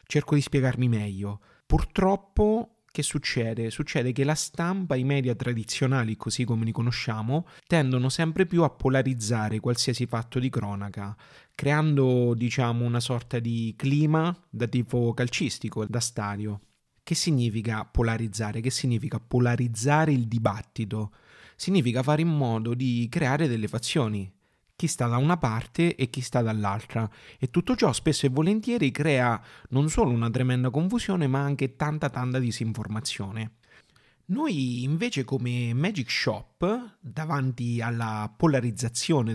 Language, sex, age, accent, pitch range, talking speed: Italian, male, 30-49, native, 115-150 Hz, 135 wpm